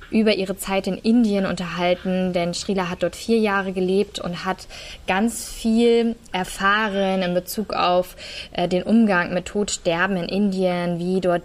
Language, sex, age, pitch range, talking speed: German, female, 20-39, 180-220 Hz, 150 wpm